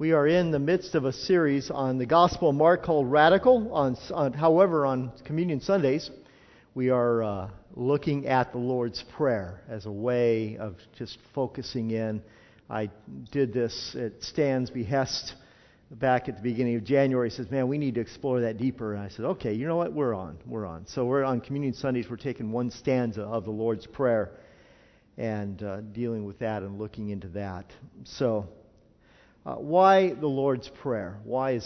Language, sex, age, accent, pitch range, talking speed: English, male, 50-69, American, 110-140 Hz, 185 wpm